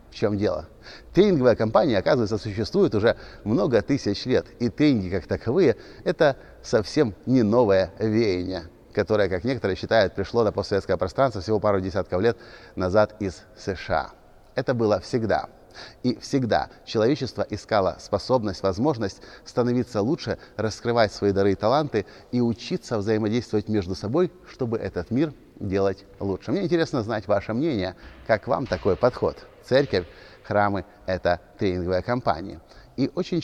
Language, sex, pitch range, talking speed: Russian, male, 95-120 Hz, 140 wpm